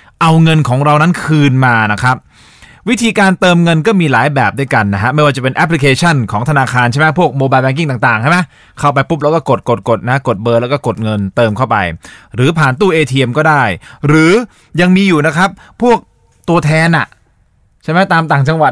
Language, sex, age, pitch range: Thai, male, 20-39, 125-185 Hz